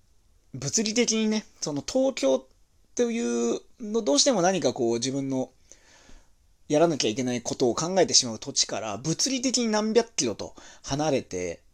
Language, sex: Japanese, male